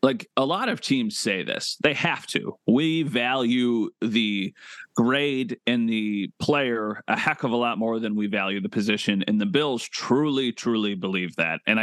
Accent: American